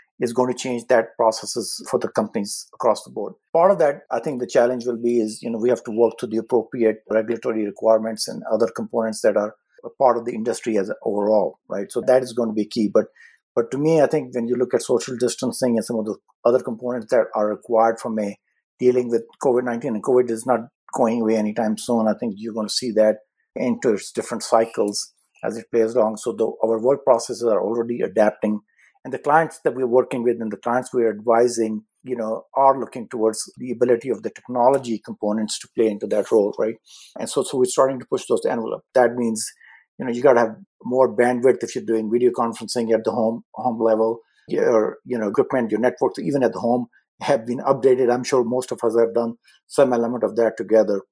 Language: English